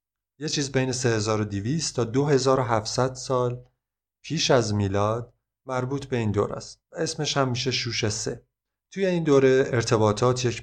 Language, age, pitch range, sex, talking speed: Persian, 30-49, 110-135 Hz, male, 135 wpm